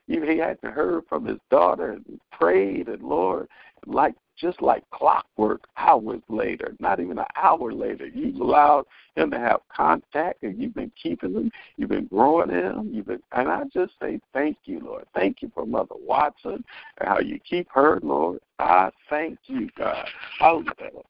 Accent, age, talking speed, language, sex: American, 60-79, 180 wpm, English, male